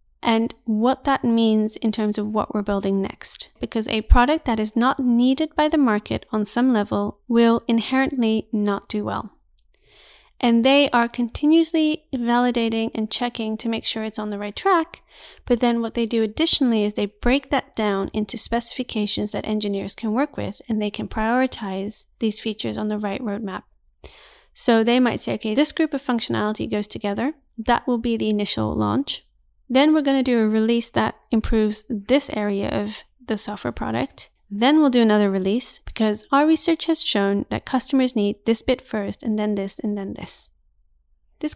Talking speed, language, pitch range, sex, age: 185 wpm, English, 210-255 Hz, female, 30-49